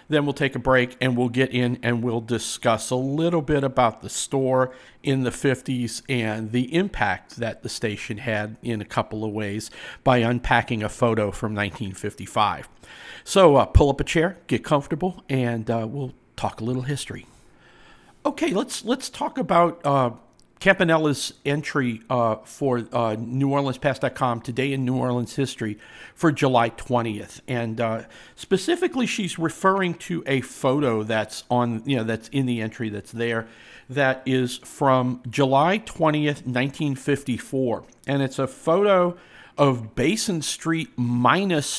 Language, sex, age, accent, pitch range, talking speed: English, male, 50-69, American, 115-145 Hz, 150 wpm